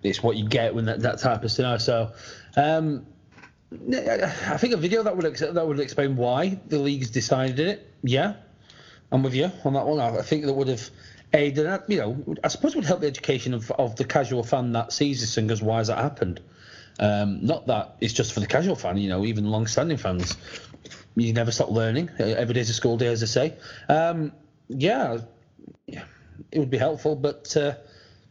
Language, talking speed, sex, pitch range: English, 210 wpm, male, 110-145 Hz